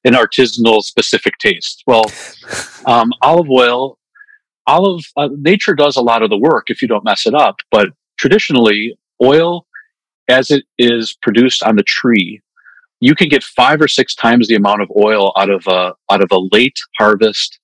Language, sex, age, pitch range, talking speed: English, male, 40-59, 105-145 Hz, 175 wpm